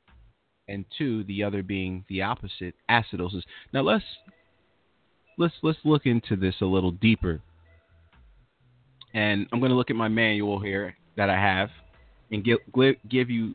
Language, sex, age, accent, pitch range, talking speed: English, male, 30-49, American, 95-125 Hz, 150 wpm